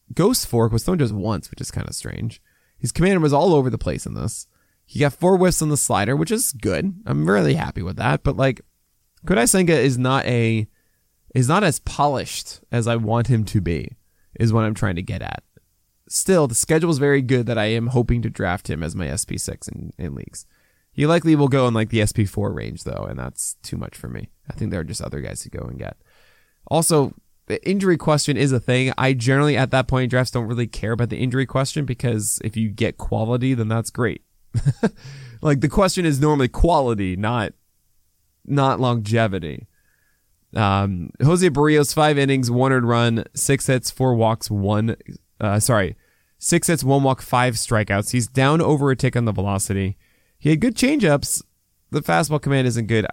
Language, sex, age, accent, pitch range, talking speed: English, male, 20-39, American, 110-140 Hz, 200 wpm